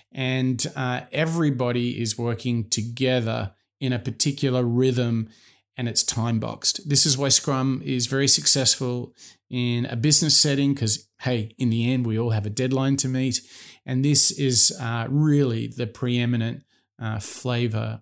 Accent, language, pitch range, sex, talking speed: Australian, English, 115-140 Hz, male, 150 wpm